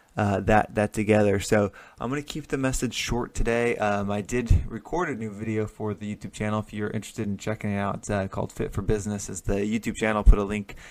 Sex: male